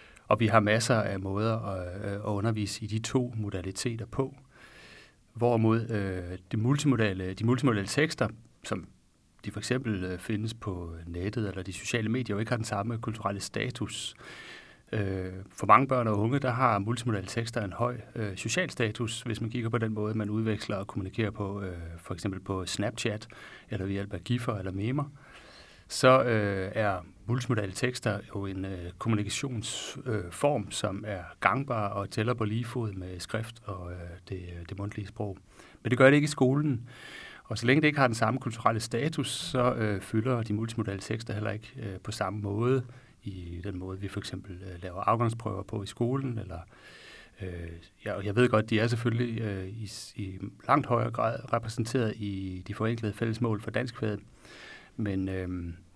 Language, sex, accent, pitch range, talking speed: Danish, male, native, 100-120 Hz, 180 wpm